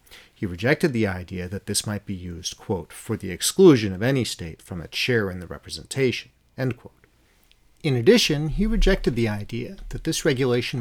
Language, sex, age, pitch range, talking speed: English, male, 40-59, 110-150 Hz, 185 wpm